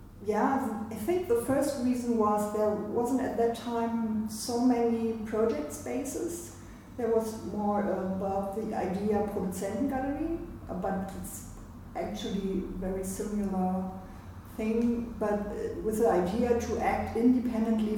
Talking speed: 125 wpm